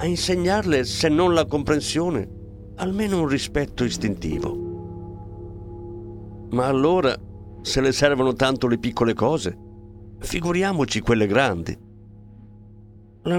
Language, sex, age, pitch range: Italian, male, 50-69, 100-130 Hz